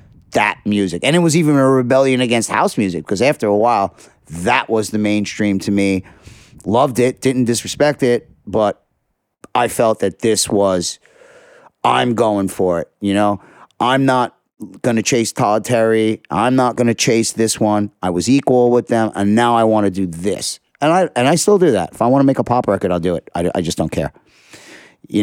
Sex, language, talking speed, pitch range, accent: male, English, 210 wpm, 100-125 Hz, American